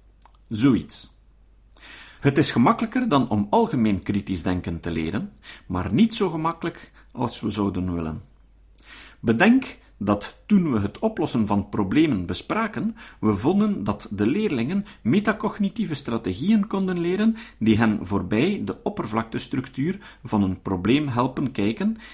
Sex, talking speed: male, 125 wpm